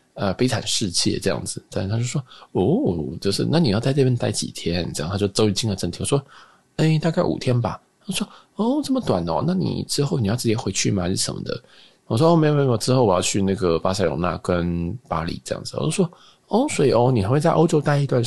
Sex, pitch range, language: male, 100-145 Hz, Chinese